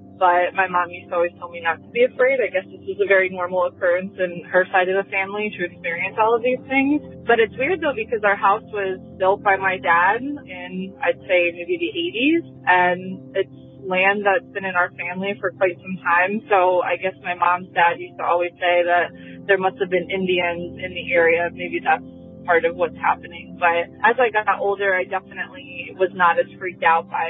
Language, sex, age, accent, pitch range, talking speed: English, female, 20-39, American, 175-200 Hz, 220 wpm